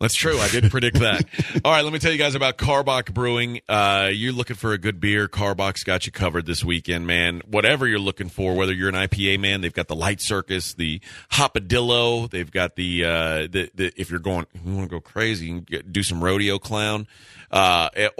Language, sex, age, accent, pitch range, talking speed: English, male, 30-49, American, 90-115 Hz, 225 wpm